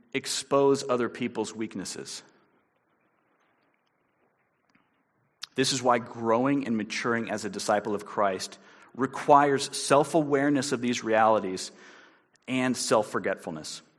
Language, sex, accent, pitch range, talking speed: English, male, American, 110-145 Hz, 95 wpm